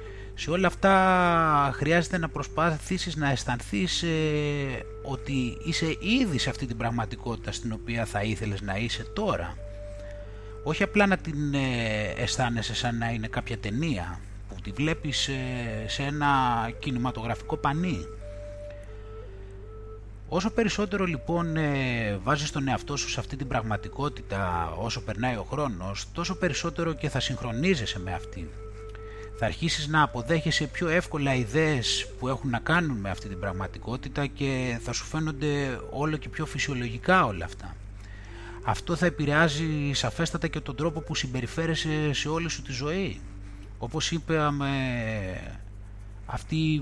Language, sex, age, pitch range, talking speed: Greek, male, 30-49, 110-155 Hz, 130 wpm